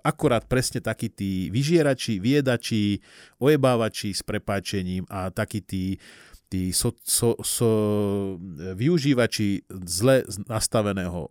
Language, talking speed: Slovak, 100 wpm